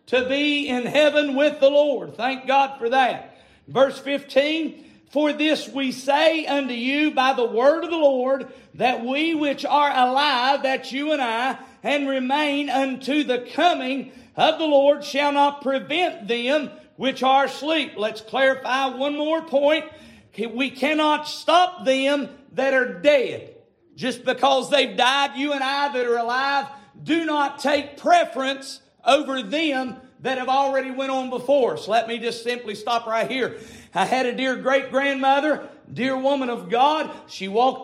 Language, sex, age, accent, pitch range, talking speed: English, male, 50-69, American, 255-290 Hz, 160 wpm